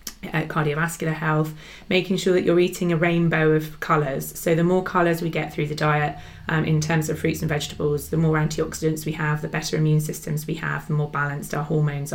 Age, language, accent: 20-39, English, British